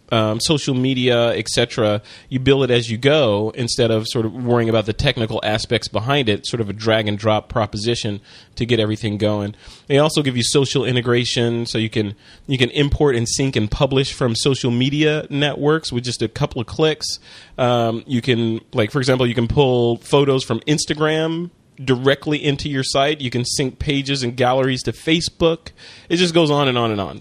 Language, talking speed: English, 195 wpm